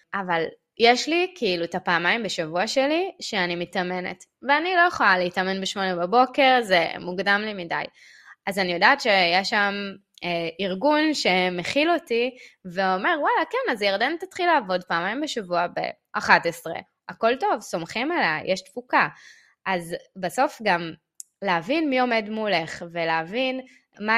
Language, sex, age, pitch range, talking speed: Hebrew, female, 20-39, 170-220 Hz, 135 wpm